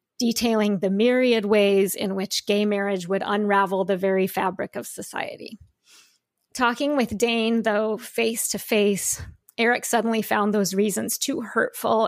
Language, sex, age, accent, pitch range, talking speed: English, female, 30-49, American, 200-230 Hz, 135 wpm